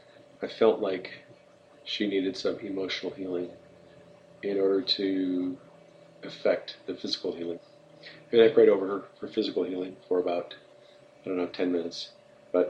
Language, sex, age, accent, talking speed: English, male, 40-59, American, 145 wpm